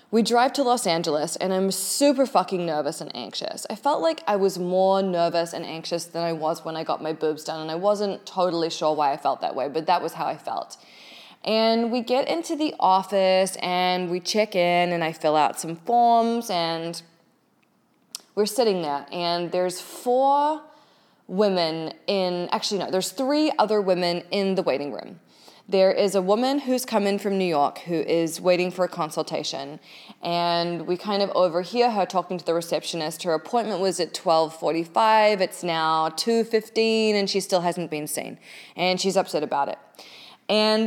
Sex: female